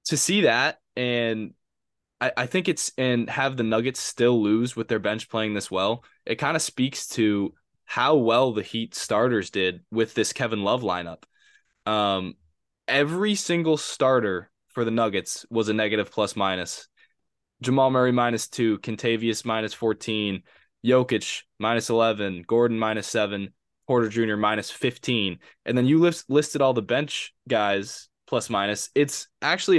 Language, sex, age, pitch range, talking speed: English, male, 10-29, 110-140 Hz, 160 wpm